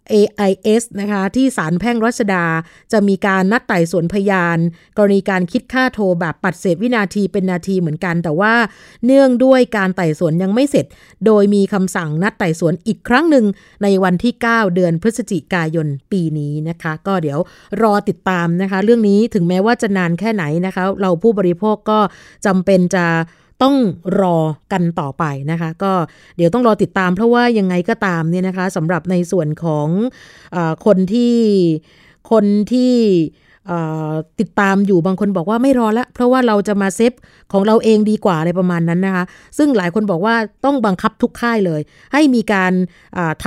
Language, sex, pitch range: Thai, female, 170-220 Hz